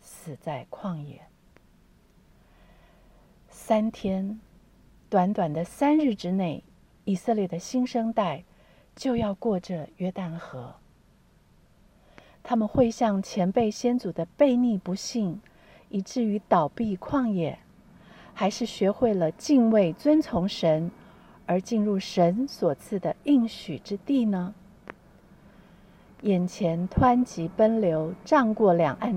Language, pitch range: Chinese, 180-230 Hz